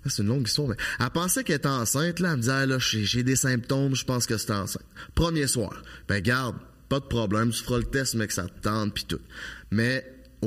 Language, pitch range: French, 115-165 Hz